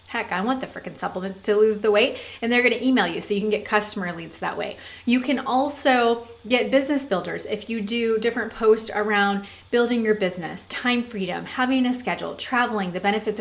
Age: 30-49